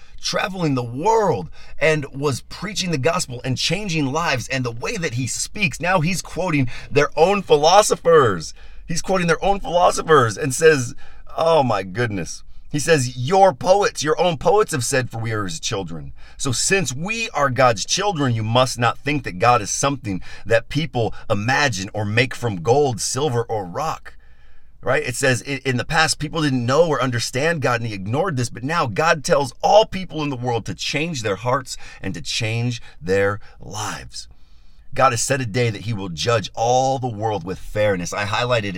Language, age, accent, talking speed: English, 40-59, American, 185 wpm